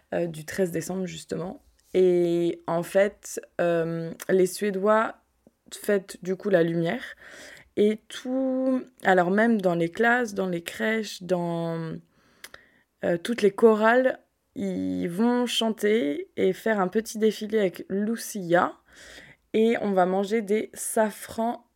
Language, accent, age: French, French, 20-39